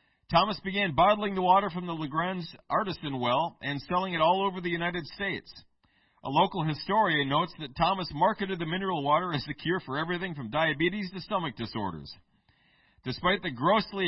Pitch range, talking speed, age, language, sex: 140-180 Hz, 175 wpm, 40-59, English, male